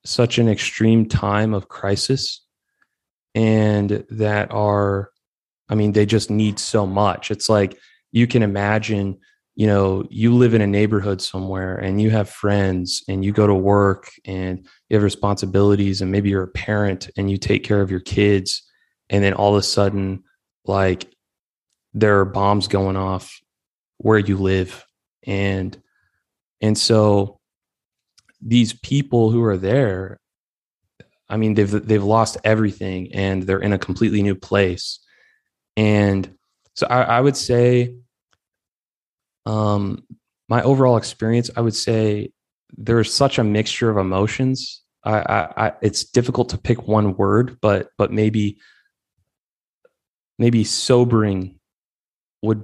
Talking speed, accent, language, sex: 140 wpm, American, English, male